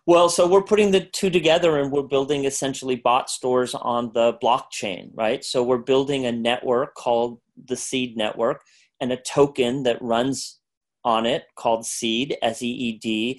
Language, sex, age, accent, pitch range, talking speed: English, male, 30-49, American, 120-145 Hz, 160 wpm